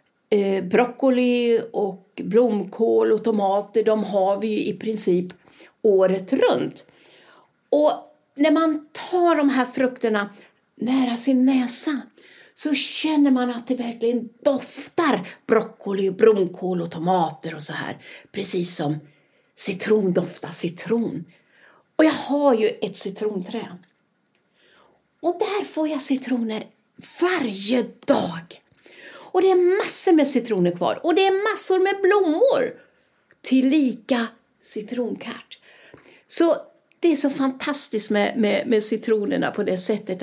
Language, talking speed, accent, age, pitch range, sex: Swedish, 125 wpm, native, 50-69, 200-290 Hz, female